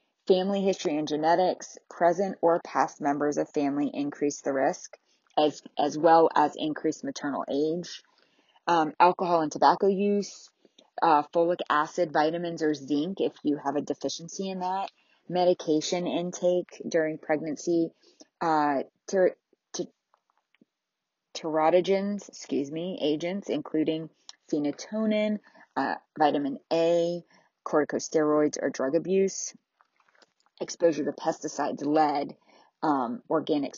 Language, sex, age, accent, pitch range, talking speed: English, female, 20-39, American, 150-180 Hz, 110 wpm